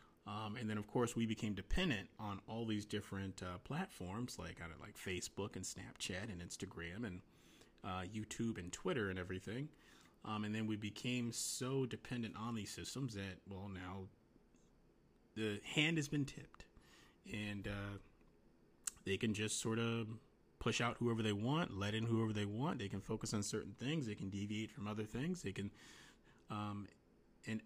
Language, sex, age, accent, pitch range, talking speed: English, male, 30-49, American, 100-125 Hz, 175 wpm